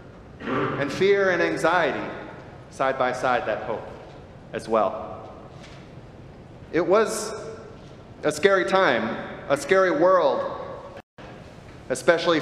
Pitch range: 125-160 Hz